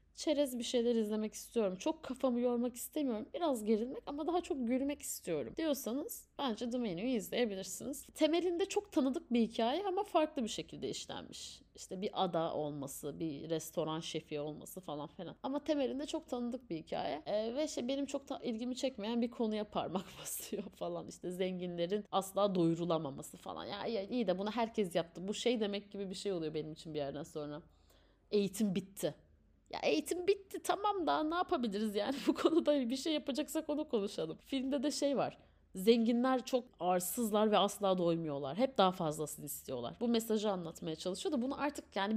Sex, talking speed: female, 175 wpm